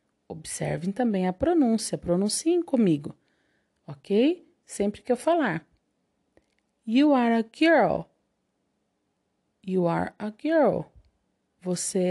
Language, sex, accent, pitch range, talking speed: Portuguese, female, Brazilian, 170-265 Hz, 100 wpm